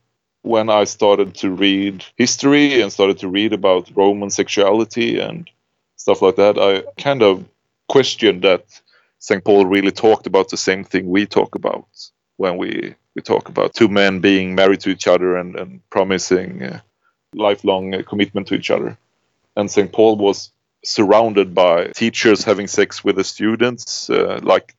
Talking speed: 160 wpm